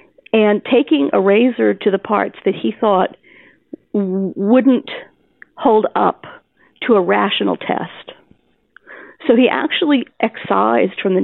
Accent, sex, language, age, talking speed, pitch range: American, female, English, 50-69, 125 wpm, 185-245 Hz